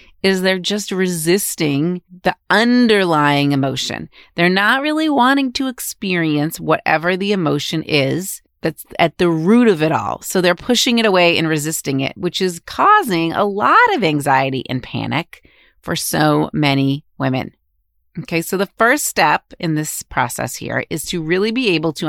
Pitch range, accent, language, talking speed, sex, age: 150-195 Hz, American, English, 165 wpm, female, 30-49